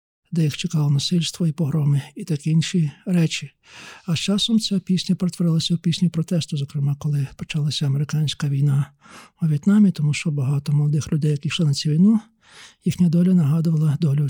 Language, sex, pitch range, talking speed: Ukrainian, male, 145-175 Hz, 170 wpm